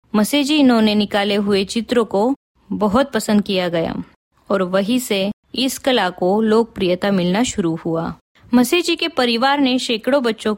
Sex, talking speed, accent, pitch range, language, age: female, 145 wpm, native, 200-250 Hz, Hindi, 20-39